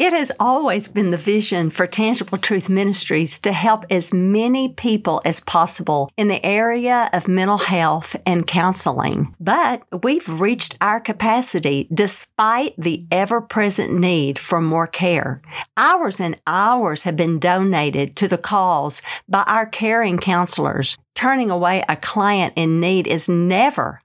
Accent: American